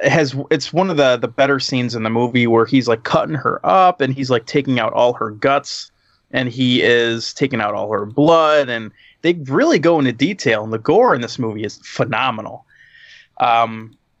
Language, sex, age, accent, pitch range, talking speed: English, male, 30-49, American, 120-155 Hz, 205 wpm